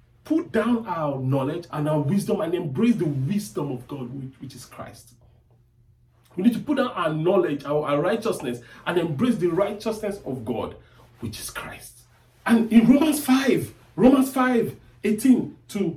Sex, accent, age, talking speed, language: male, Nigerian, 40-59, 165 wpm, English